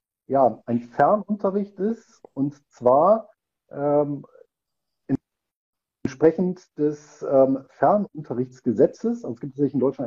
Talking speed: 100 wpm